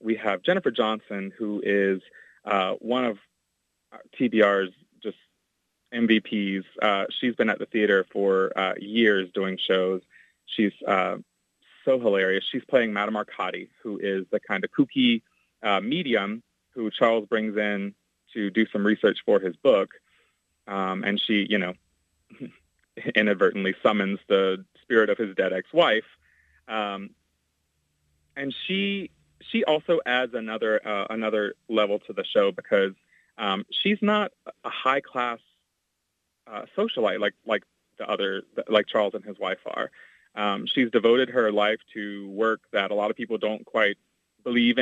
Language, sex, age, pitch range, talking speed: English, male, 30-49, 95-120 Hz, 145 wpm